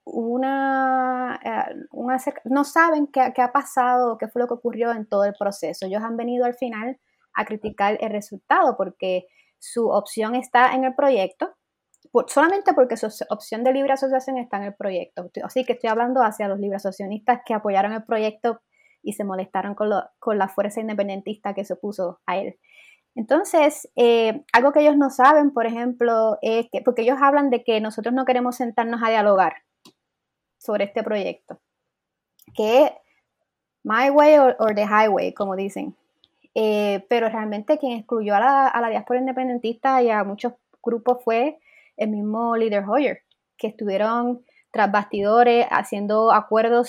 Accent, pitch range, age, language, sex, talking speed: American, 210-255 Hz, 20-39, Spanish, female, 170 wpm